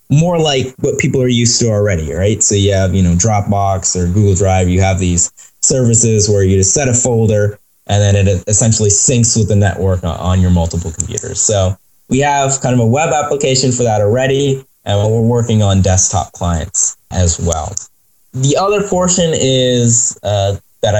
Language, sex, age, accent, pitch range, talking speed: English, male, 10-29, American, 95-125 Hz, 180 wpm